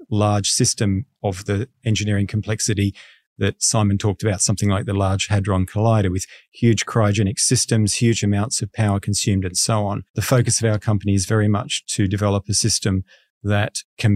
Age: 40-59